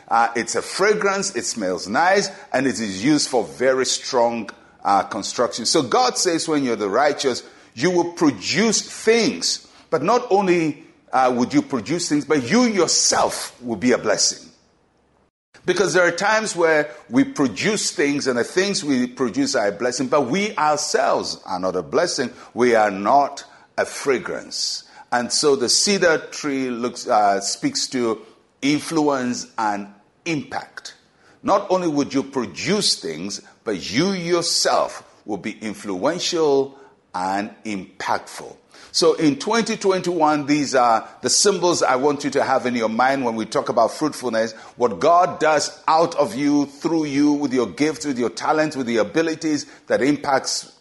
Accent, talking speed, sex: Nigerian, 160 wpm, male